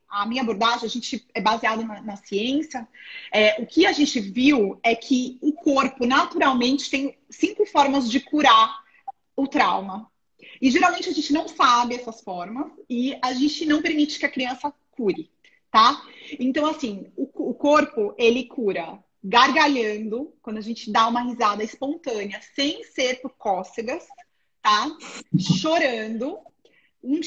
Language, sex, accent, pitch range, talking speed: Portuguese, female, Brazilian, 230-290 Hz, 150 wpm